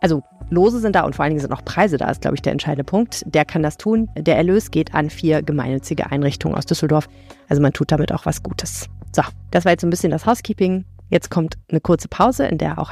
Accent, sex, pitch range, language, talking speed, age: German, female, 155-195 Hz, German, 250 wpm, 30-49